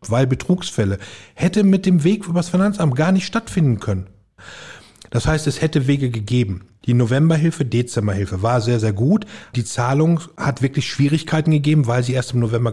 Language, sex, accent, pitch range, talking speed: German, male, German, 115-165 Hz, 175 wpm